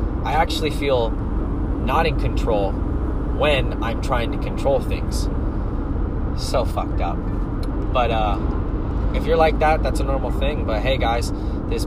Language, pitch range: English, 85-105 Hz